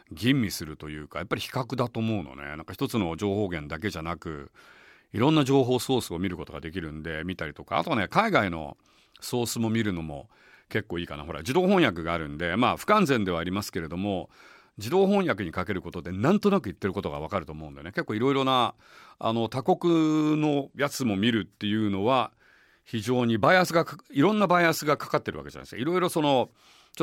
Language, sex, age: Japanese, male, 40-59